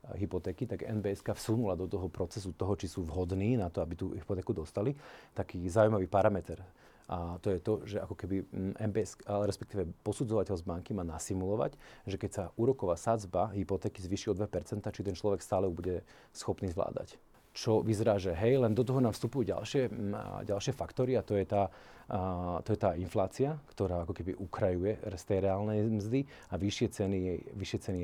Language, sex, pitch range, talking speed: Slovak, male, 95-110 Hz, 175 wpm